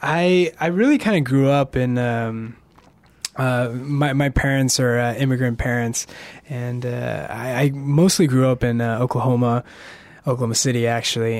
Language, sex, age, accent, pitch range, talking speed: English, male, 20-39, American, 115-145 Hz, 160 wpm